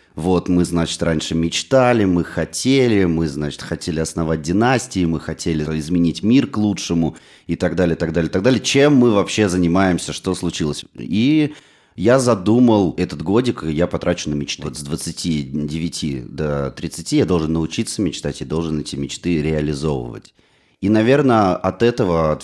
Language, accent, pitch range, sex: Russian, native, 75-95 Hz, male